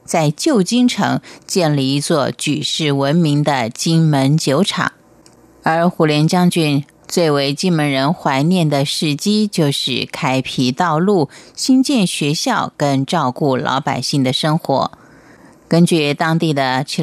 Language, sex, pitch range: Chinese, female, 140-190 Hz